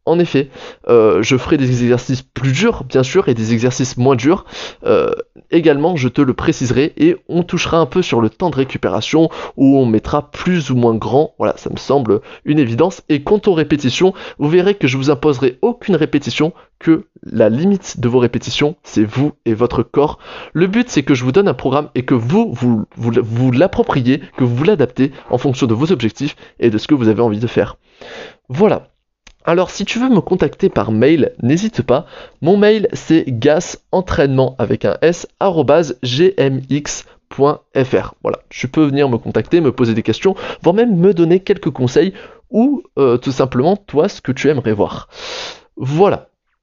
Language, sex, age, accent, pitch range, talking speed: French, male, 20-39, French, 130-185 Hz, 190 wpm